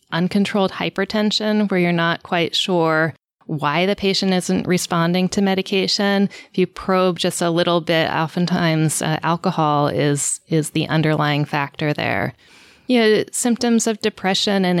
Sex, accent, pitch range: female, American, 160-200 Hz